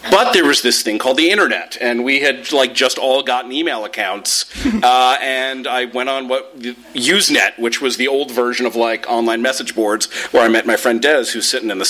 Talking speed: 220 wpm